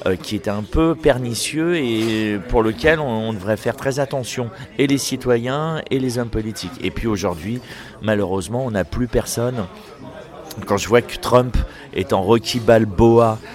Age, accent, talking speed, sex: 40-59, French, 170 wpm, male